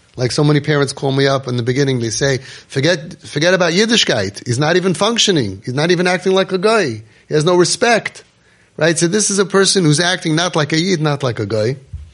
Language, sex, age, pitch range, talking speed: English, male, 30-49, 120-170 Hz, 230 wpm